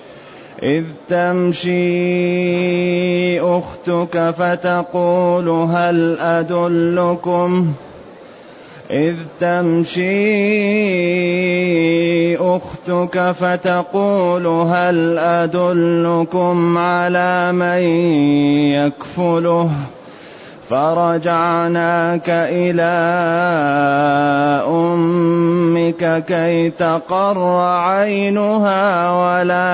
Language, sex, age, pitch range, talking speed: Arabic, male, 30-49, 165-180 Hz, 45 wpm